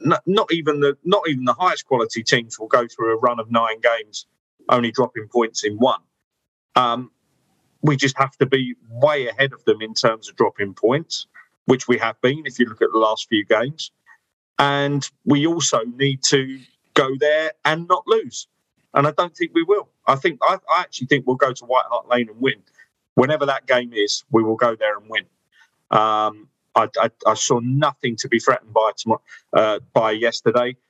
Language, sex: English, male